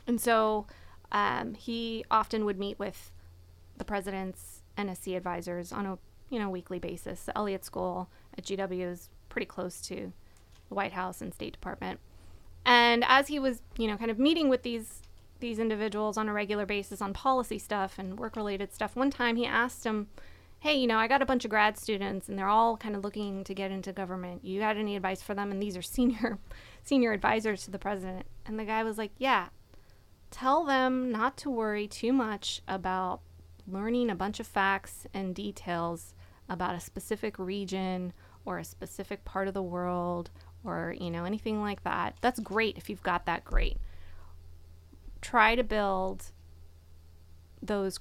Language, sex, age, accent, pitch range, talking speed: English, female, 20-39, American, 180-225 Hz, 180 wpm